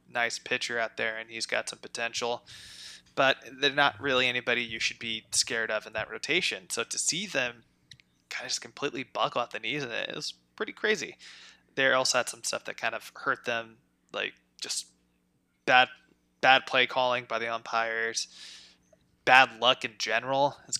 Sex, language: male, English